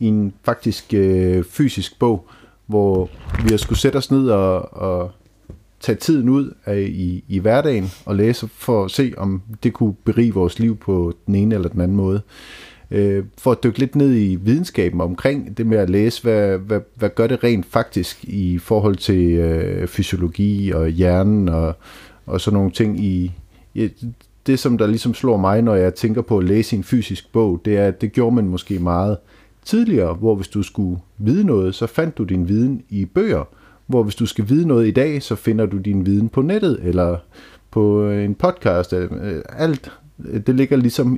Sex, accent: male, native